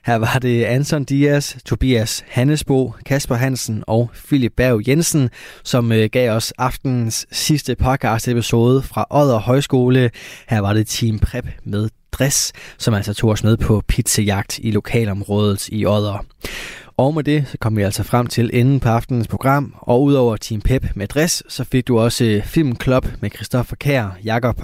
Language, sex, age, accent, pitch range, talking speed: Danish, male, 20-39, native, 110-130 Hz, 165 wpm